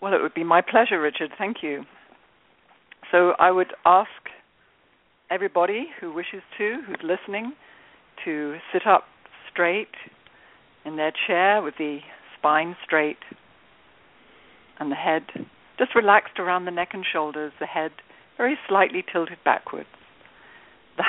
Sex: female